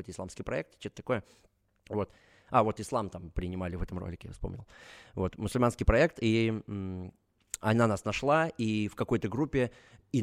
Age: 20-39